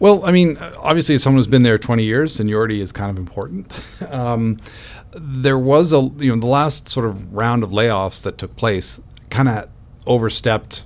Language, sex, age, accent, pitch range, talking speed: English, male, 50-69, American, 95-115 Hz, 195 wpm